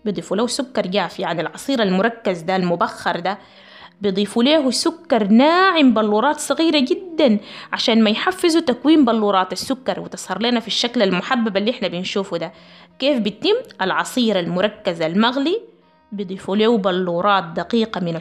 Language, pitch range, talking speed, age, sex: Arabic, 205-275 Hz, 140 wpm, 20-39, female